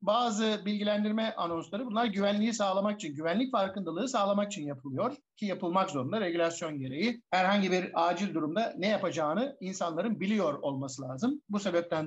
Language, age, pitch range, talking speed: Turkish, 60-79, 195-270 Hz, 145 wpm